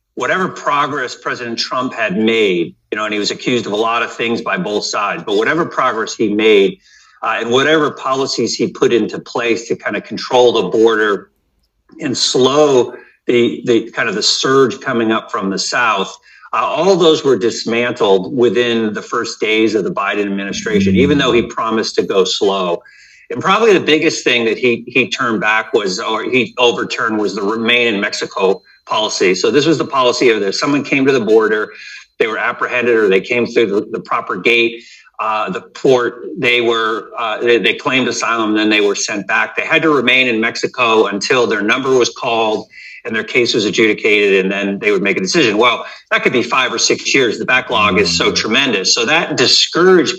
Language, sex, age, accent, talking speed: English, male, 50-69, American, 205 wpm